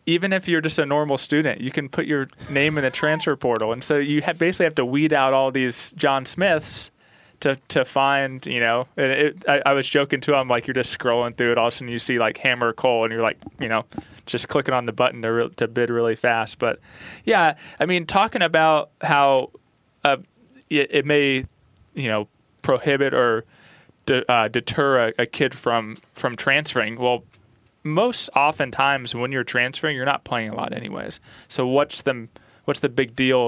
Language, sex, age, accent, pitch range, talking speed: English, male, 20-39, American, 115-140 Hz, 210 wpm